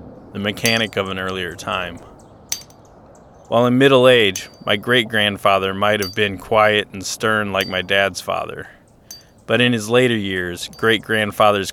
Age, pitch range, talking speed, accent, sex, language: 20-39, 95-110 Hz, 145 wpm, American, male, English